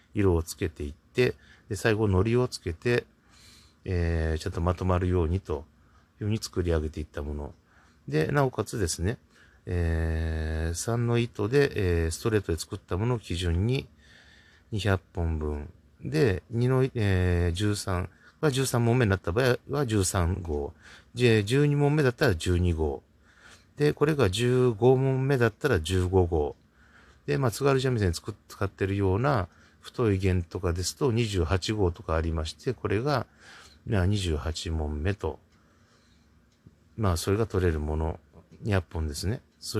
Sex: male